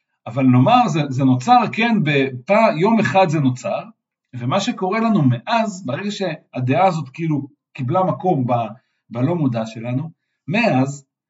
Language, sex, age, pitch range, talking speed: Hebrew, male, 50-69, 130-185 Hz, 125 wpm